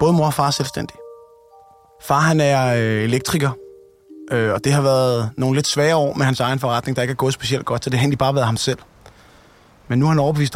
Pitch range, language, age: 120-145 Hz, Danish, 20-39